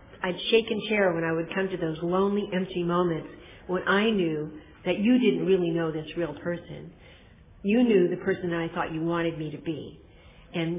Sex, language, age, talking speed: female, English, 50-69, 205 wpm